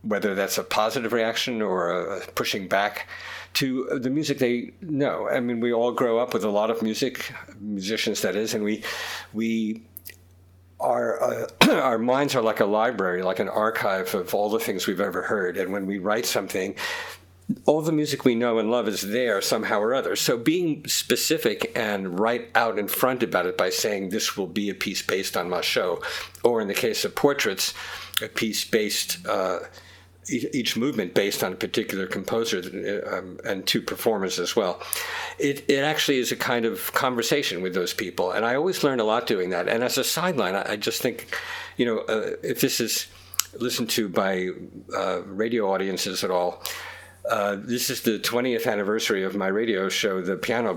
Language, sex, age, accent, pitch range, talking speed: English, male, 50-69, American, 100-140 Hz, 190 wpm